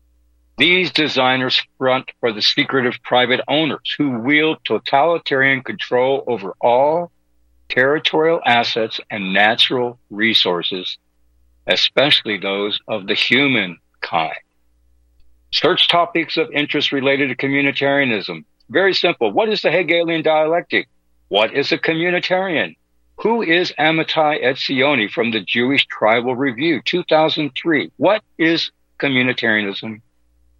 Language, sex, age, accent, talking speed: English, male, 60-79, American, 110 wpm